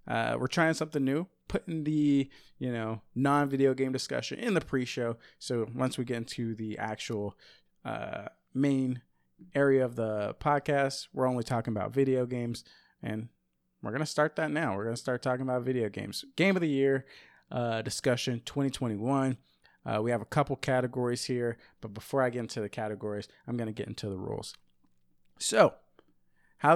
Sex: male